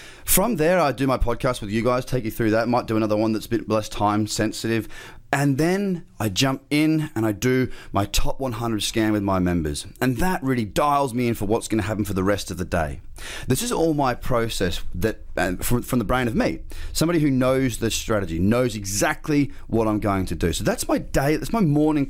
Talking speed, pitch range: 230 wpm, 105-150 Hz